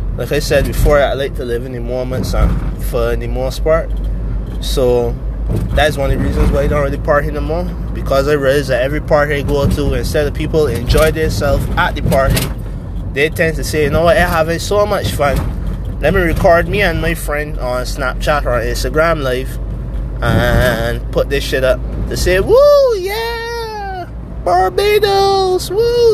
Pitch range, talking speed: 125-175 Hz, 190 wpm